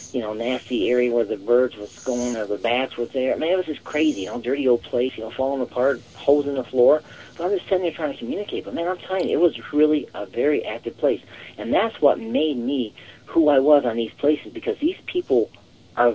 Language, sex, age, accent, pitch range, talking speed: English, male, 40-59, American, 120-185 Hz, 255 wpm